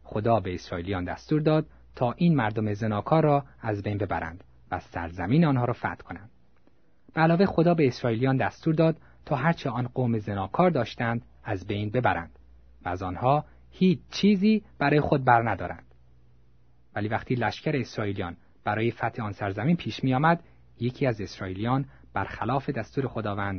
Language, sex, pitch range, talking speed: Persian, male, 90-140 Hz, 150 wpm